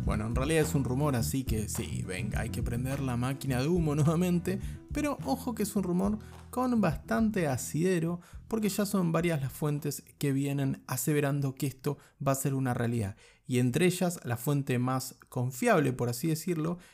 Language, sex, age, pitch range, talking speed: Spanish, male, 20-39, 130-175 Hz, 190 wpm